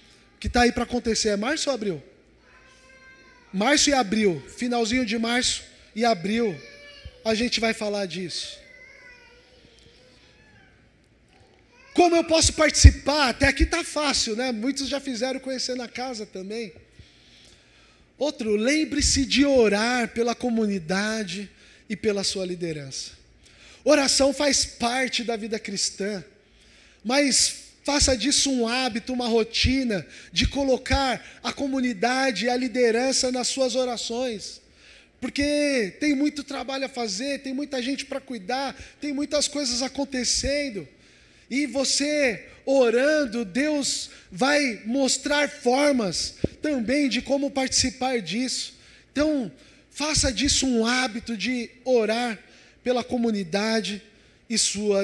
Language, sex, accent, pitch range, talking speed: Portuguese, male, Brazilian, 225-275 Hz, 120 wpm